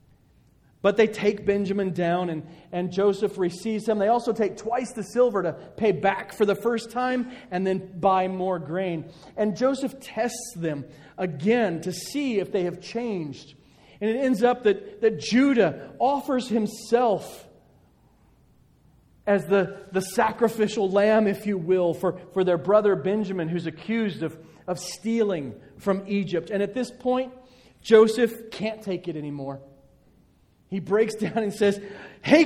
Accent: American